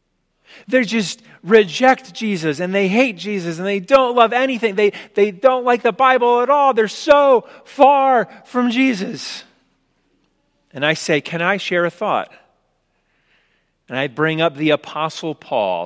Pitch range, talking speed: 160-225 Hz, 155 wpm